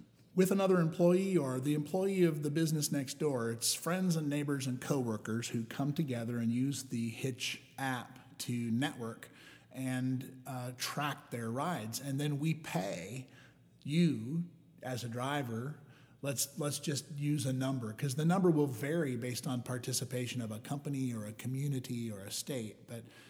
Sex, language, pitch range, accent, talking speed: male, English, 120-150 Hz, American, 165 wpm